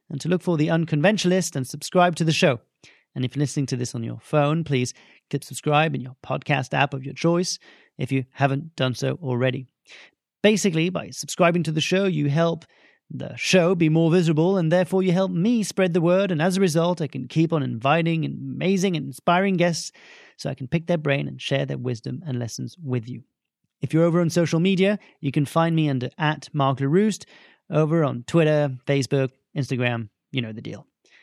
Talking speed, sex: 210 wpm, male